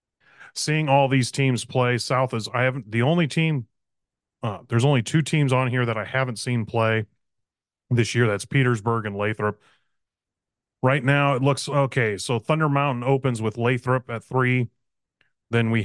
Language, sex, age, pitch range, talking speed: English, male, 30-49, 105-130 Hz, 170 wpm